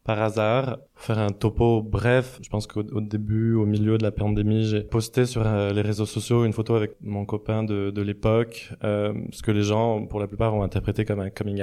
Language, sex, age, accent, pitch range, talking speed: French, male, 20-39, French, 105-115 Hz, 225 wpm